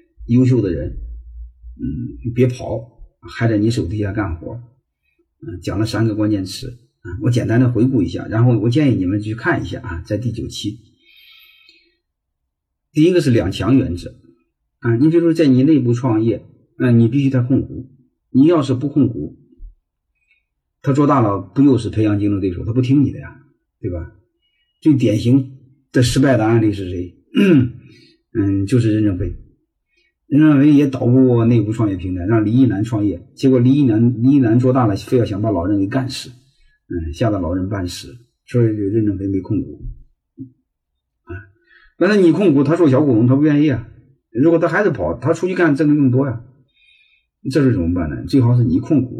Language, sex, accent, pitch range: Chinese, male, native, 105-135 Hz